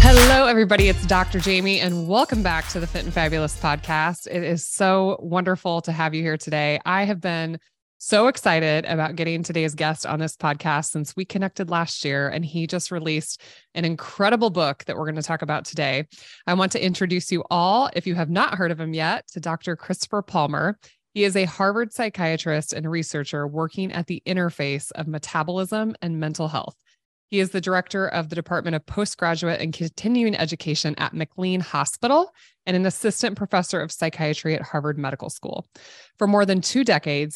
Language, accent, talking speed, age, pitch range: English, American, 190 wpm, 20-39, 155-190 Hz